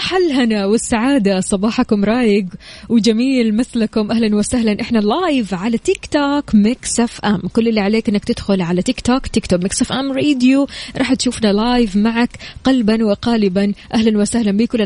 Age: 20-39